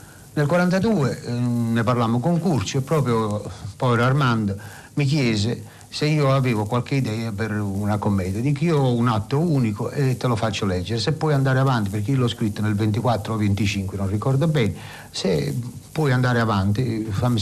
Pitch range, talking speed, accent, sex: 105-135 Hz, 175 wpm, native, male